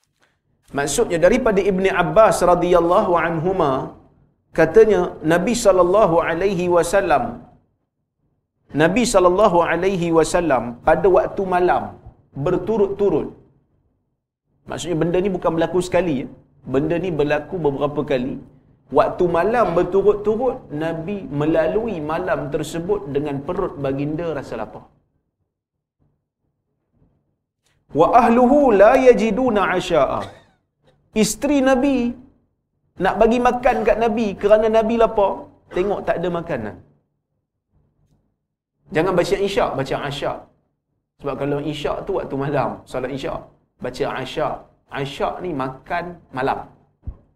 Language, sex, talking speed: Malayalam, male, 105 wpm